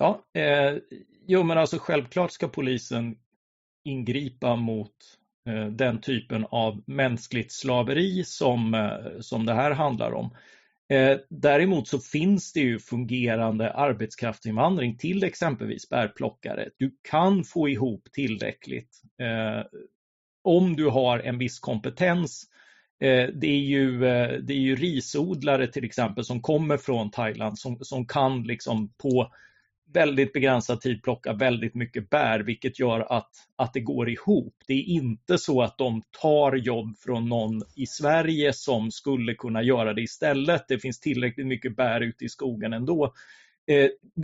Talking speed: 145 wpm